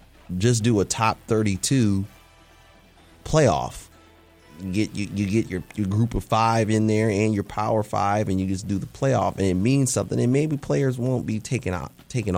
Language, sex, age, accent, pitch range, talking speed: English, male, 30-49, American, 95-115 Hz, 195 wpm